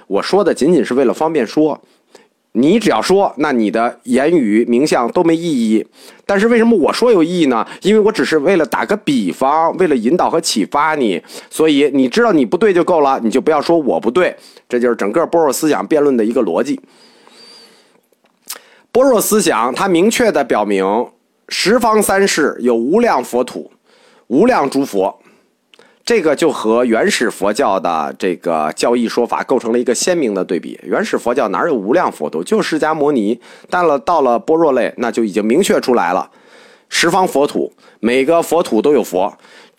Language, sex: Chinese, male